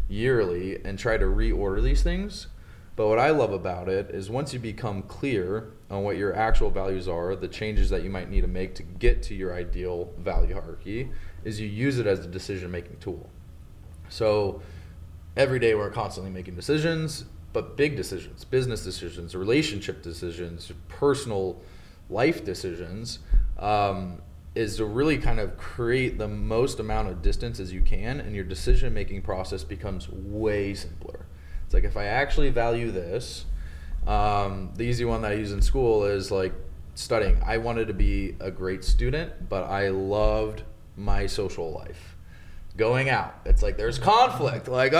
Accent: American